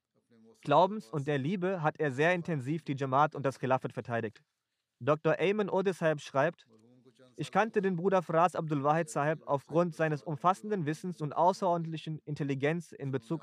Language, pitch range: German, 140-170 Hz